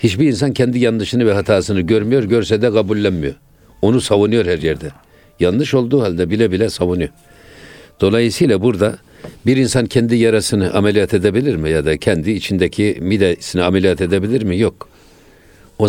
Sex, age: male, 60-79